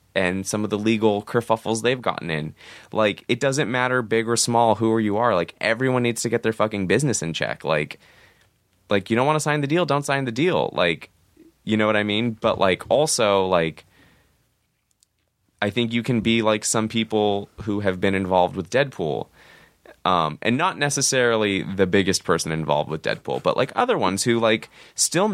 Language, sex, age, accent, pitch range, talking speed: English, male, 20-39, American, 95-120 Hz, 195 wpm